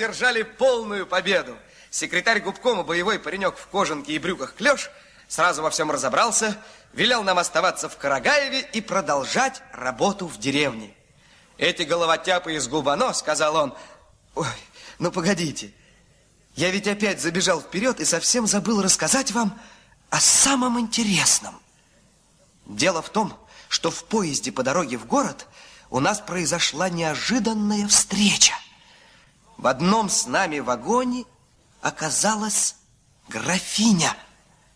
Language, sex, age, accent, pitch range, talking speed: Russian, male, 30-49, native, 160-235 Hz, 120 wpm